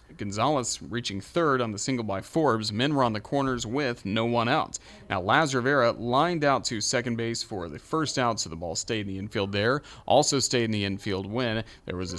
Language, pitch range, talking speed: English, 105-135 Hz, 225 wpm